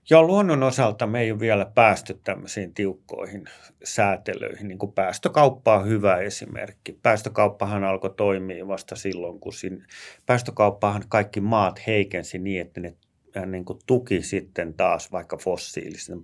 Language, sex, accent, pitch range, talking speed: Finnish, male, native, 95-115 Hz, 135 wpm